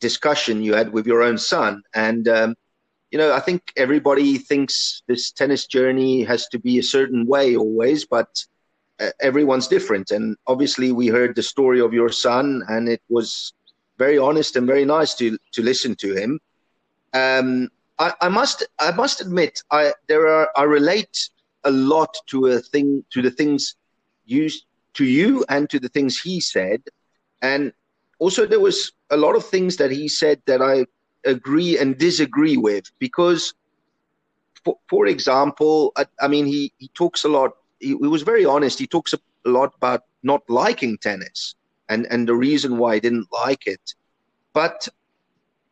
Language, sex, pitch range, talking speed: English, male, 120-175 Hz, 175 wpm